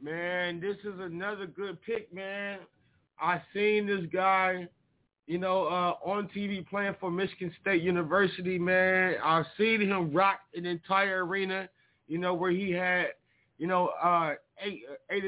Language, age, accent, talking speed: English, 20-39, American, 155 wpm